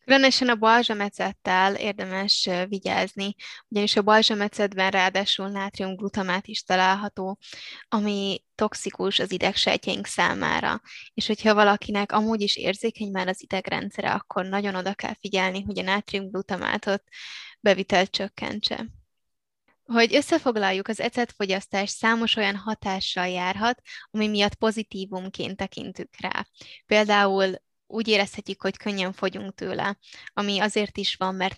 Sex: female